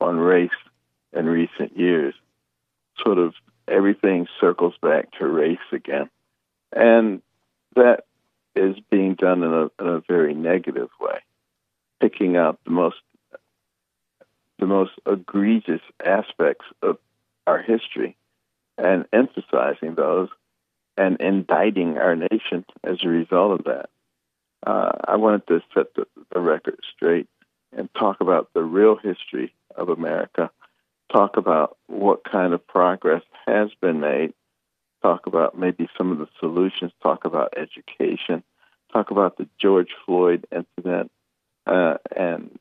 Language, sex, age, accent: English, male, 60-79, American